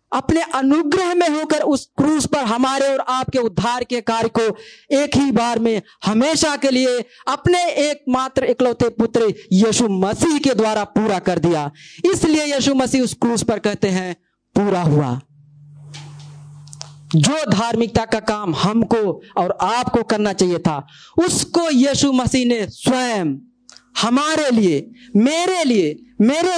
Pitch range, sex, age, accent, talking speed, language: 190-265 Hz, female, 40-59, native, 145 wpm, Hindi